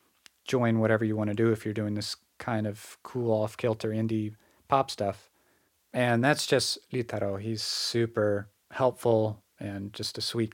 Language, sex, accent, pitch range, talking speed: English, male, American, 110-125 Hz, 160 wpm